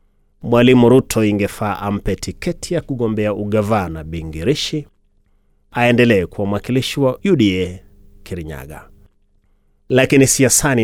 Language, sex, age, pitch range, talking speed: Swahili, male, 30-49, 95-125 Hz, 95 wpm